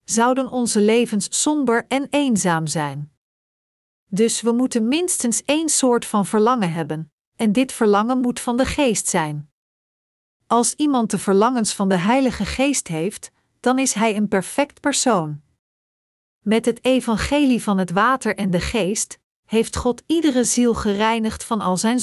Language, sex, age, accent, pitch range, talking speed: Dutch, female, 50-69, Dutch, 195-255 Hz, 155 wpm